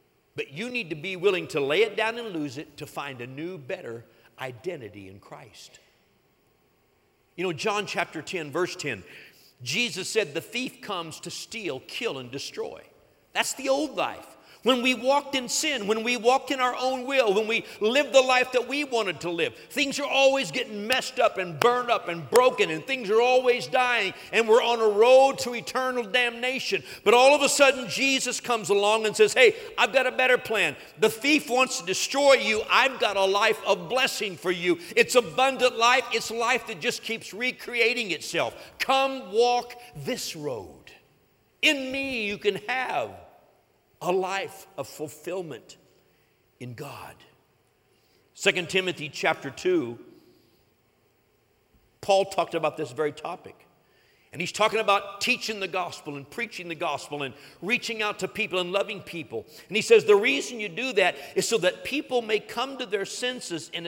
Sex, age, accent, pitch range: male, 50-69, American, 180-255 Hz